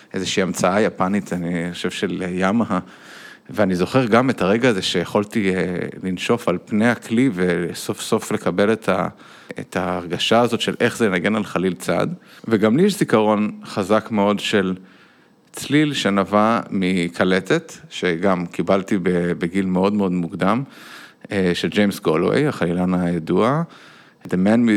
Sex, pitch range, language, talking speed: male, 90-115 Hz, Hebrew, 130 wpm